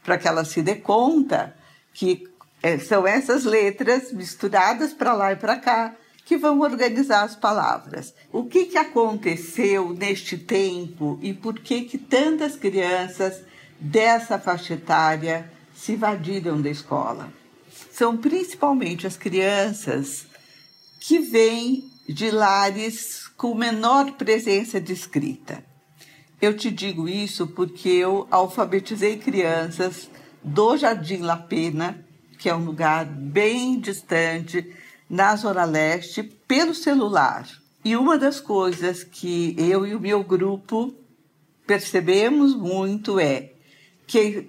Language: Portuguese